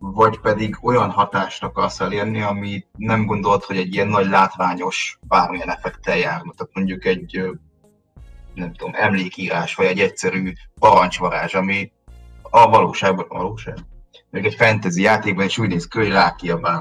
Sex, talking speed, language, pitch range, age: male, 145 wpm, Hungarian, 90-105 Hz, 30-49